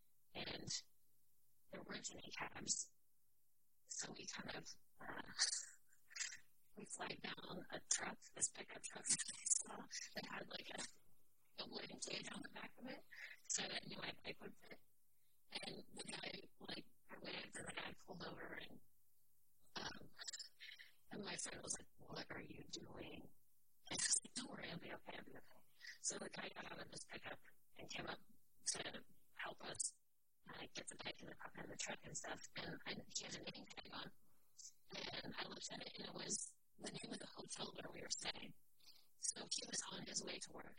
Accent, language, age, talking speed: American, English, 30-49, 195 wpm